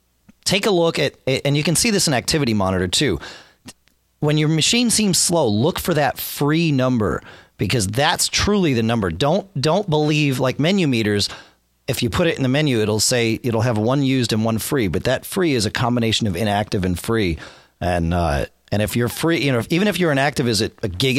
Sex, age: male, 40-59